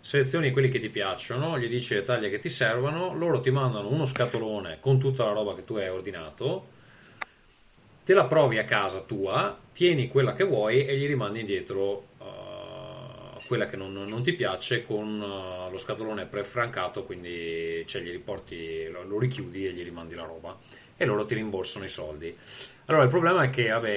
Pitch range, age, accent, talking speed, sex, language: 100-130 Hz, 30-49, native, 190 wpm, male, Italian